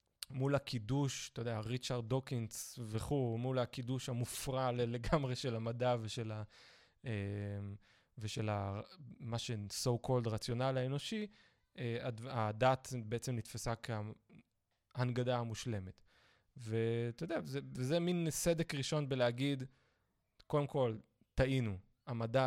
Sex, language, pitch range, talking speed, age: male, Hebrew, 115-135 Hz, 105 wpm, 20-39